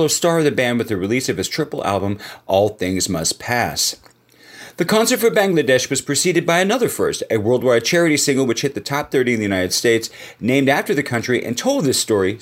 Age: 40-59